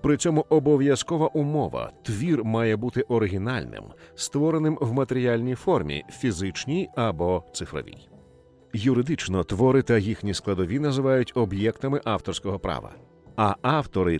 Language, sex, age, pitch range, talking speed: Ukrainian, male, 40-59, 100-135 Hz, 120 wpm